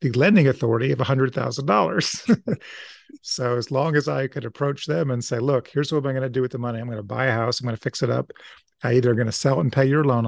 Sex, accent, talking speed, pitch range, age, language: male, American, 290 wpm, 120-140 Hz, 40-59, English